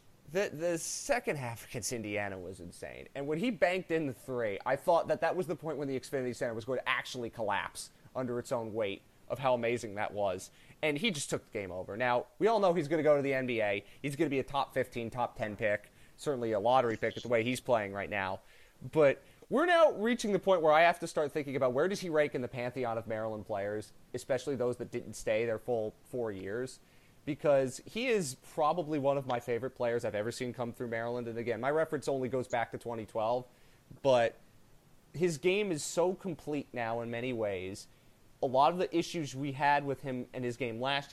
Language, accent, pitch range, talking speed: English, American, 120-155 Hz, 230 wpm